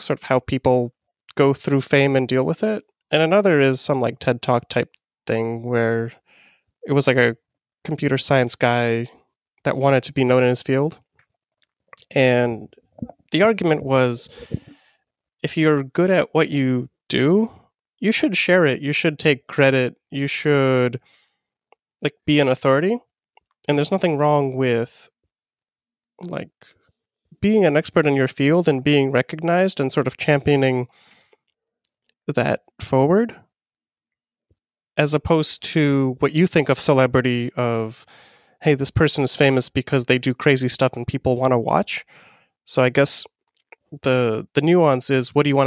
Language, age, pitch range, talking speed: English, 20-39, 125-150 Hz, 155 wpm